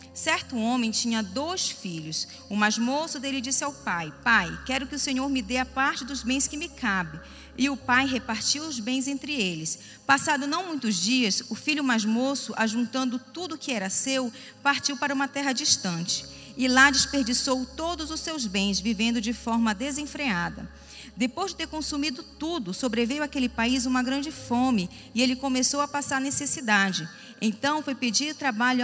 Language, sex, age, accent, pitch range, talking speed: Portuguese, female, 40-59, Brazilian, 220-275 Hz, 175 wpm